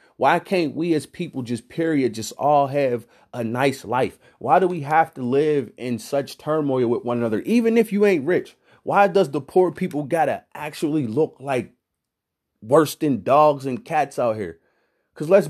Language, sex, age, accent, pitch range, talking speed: English, male, 30-49, American, 130-170 Hz, 190 wpm